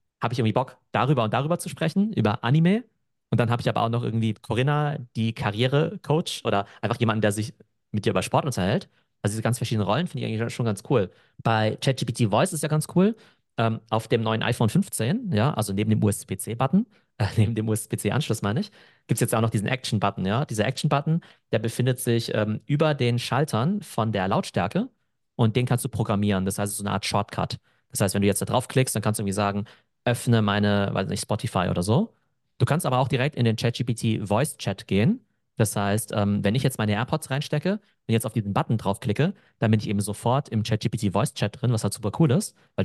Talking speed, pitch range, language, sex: 220 wpm, 110-135 Hz, German, male